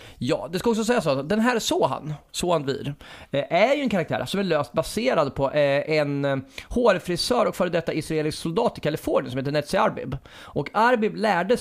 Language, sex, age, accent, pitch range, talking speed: Swedish, male, 30-49, native, 125-175 Hz, 195 wpm